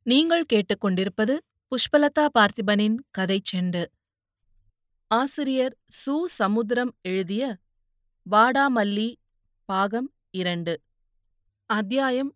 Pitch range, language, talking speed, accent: 190-240 Hz, Tamil, 65 wpm, native